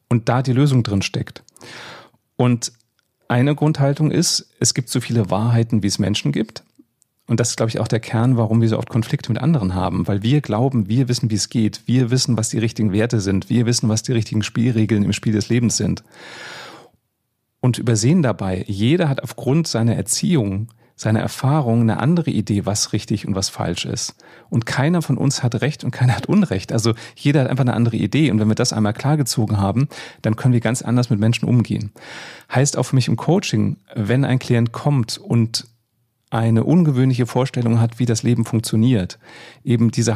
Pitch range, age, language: 110-135 Hz, 40-59, German